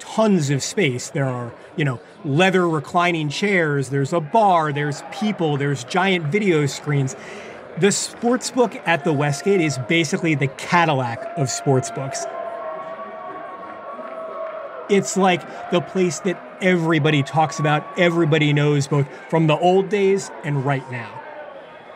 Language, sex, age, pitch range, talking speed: English, male, 30-49, 145-190 Hz, 135 wpm